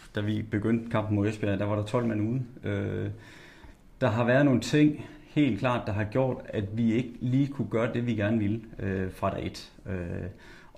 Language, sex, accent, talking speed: Danish, male, native, 210 wpm